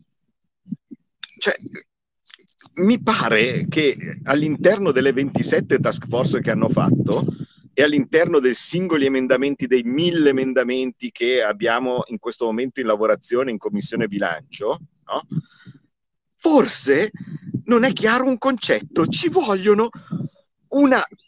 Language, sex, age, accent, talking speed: Italian, male, 50-69, native, 115 wpm